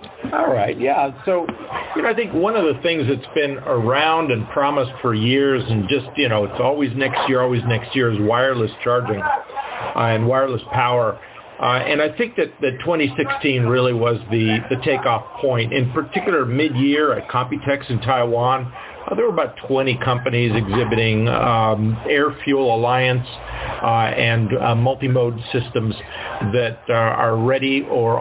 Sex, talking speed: male, 165 wpm